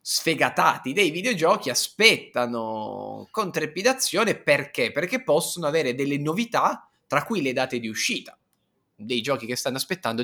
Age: 20-39